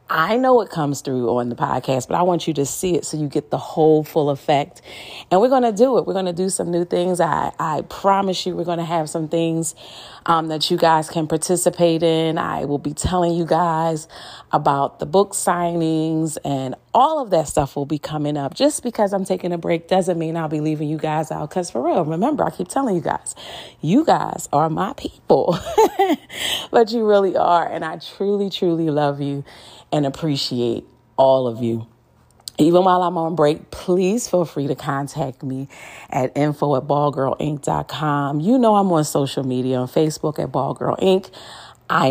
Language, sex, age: English, female, 40-59